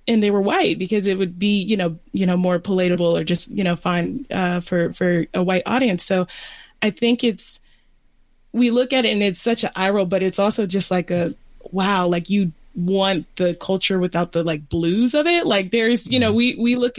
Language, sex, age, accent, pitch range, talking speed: English, female, 20-39, American, 170-210 Hz, 225 wpm